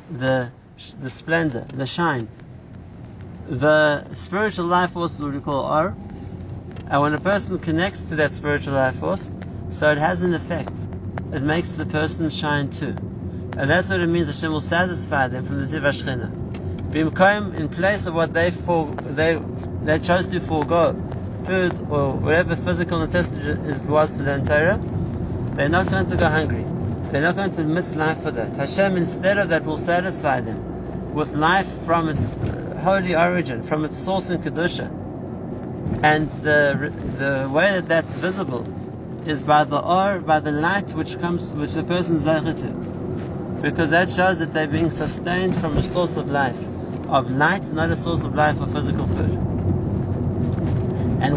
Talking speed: 170 wpm